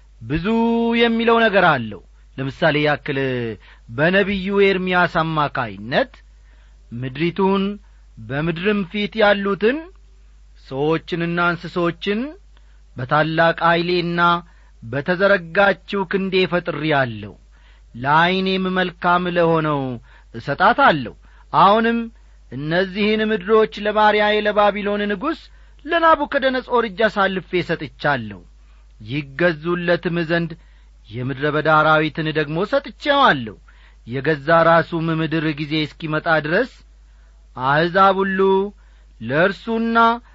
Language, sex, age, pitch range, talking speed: Amharic, male, 40-59, 140-200 Hz, 70 wpm